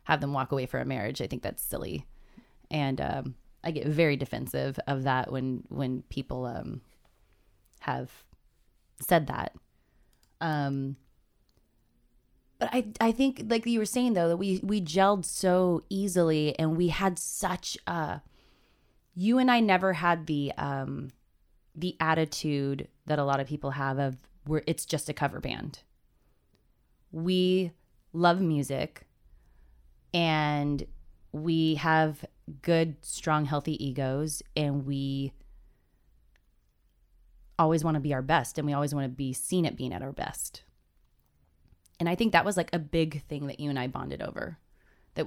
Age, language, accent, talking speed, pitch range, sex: 20-39, English, American, 150 wpm, 135-165 Hz, female